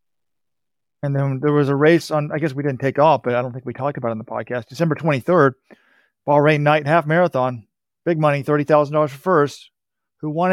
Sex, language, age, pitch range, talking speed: male, English, 40-59, 125-165 Hz, 220 wpm